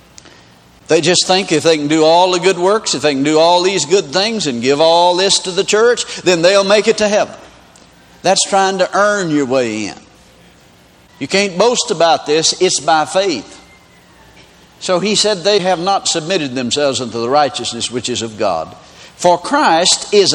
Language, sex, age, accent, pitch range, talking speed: English, male, 60-79, American, 160-215 Hz, 190 wpm